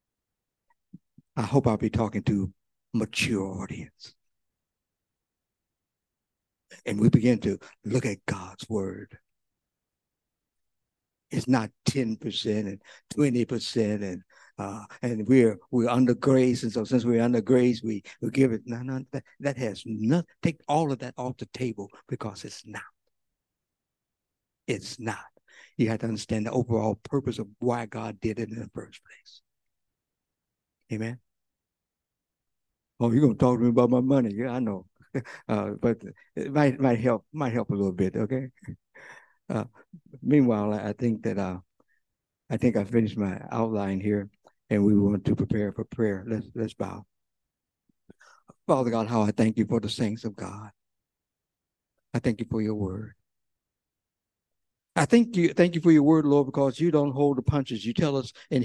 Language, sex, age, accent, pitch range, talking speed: English, male, 60-79, American, 105-130 Hz, 160 wpm